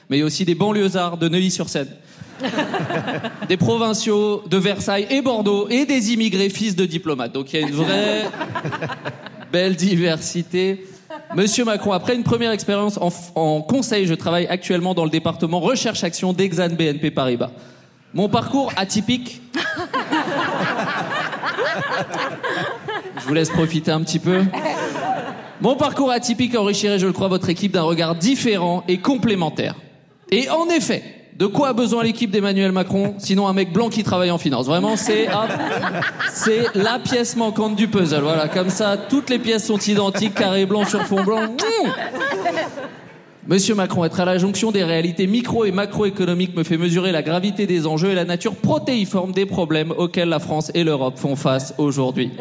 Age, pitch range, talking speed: 30-49, 170-220 Hz, 165 wpm